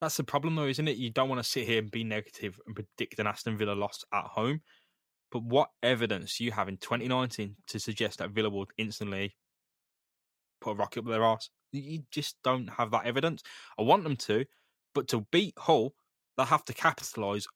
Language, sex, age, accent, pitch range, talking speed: English, male, 10-29, British, 110-145 Hz, 210 wpm